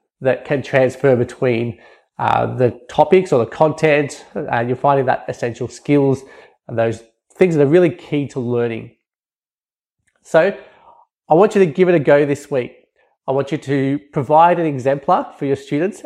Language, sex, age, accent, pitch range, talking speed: English, male, 20-39, Australian, 135-170 Hz, 170 wpm